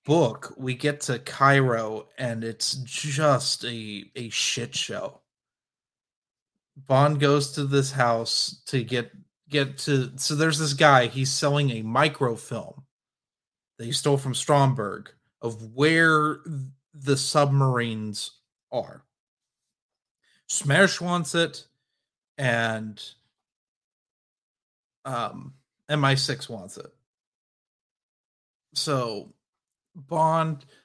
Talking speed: 95 wpm